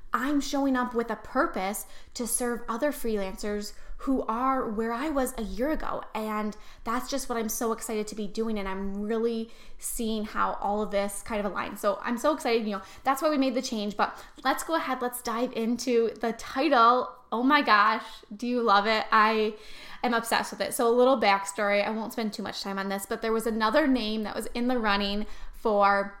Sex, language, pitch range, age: female, English, 200-240 Hz, 10-29